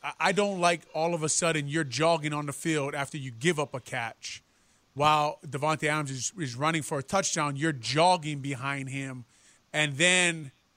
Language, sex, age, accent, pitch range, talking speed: English, male, 20-39, American, 145-185 Hz, 185 wpm